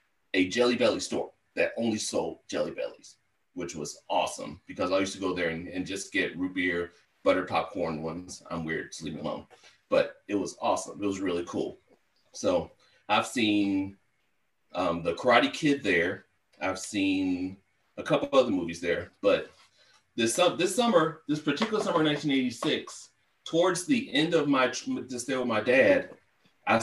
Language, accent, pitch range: English, American, 100-160 Hz